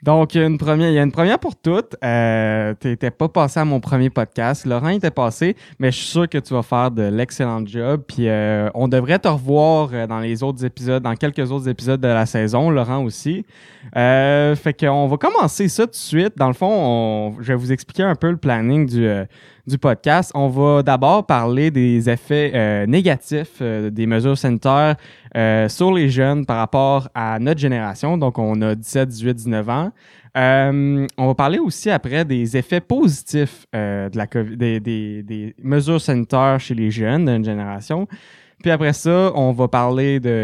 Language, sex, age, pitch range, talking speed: English, male, 20-39, 115-150 Hz, 195 wpm